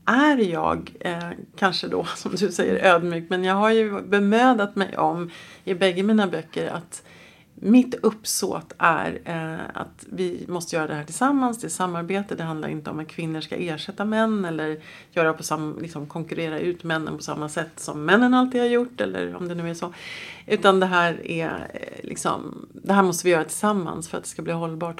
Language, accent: Swedish, native